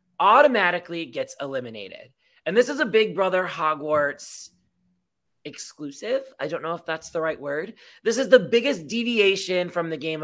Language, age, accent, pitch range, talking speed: English, 20-39, American, 145-190 Hz, 160 wpm